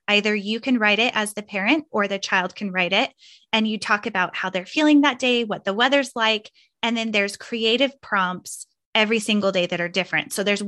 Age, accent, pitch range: 20-39, American, 185-230 Hz